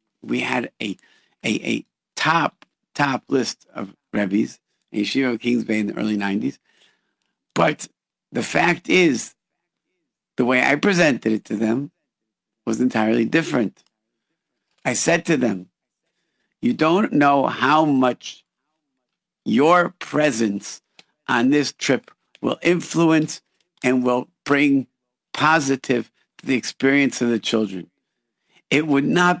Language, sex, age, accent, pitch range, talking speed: English, male, 50-69, American, 115-155 Hz, 125 wpm